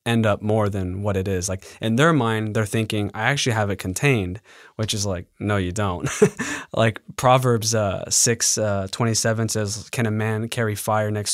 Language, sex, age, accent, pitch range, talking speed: English, male, 20-39, American, 105-120 Hz, 195 wpm